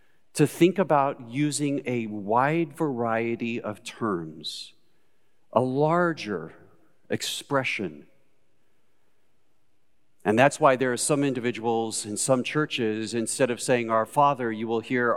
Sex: male